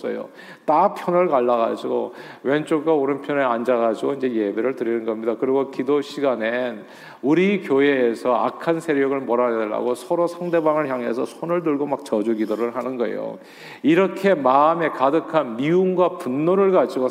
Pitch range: 125-165 Hz